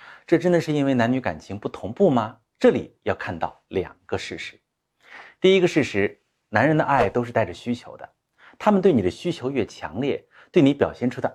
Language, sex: Chinese, male